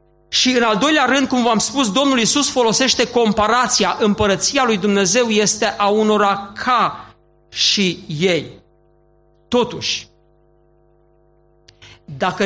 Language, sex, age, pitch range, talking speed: Romanian, male, 50-69, 195-245 Hz, 110 wpm